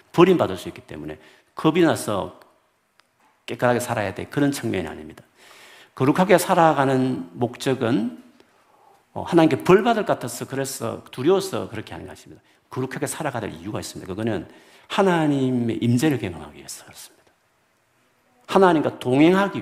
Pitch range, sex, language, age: 115-160 Hz, male, Korean, 50-69